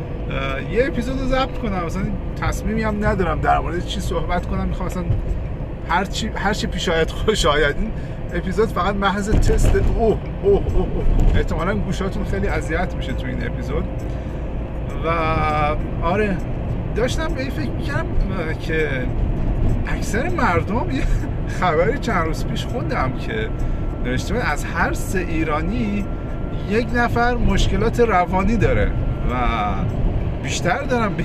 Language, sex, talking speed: Persian, male, 125 wpm